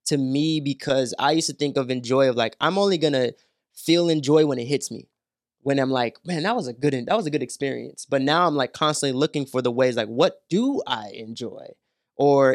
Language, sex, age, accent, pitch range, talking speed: English, male, 20-39, American, 125-145 Hz, 230 wpm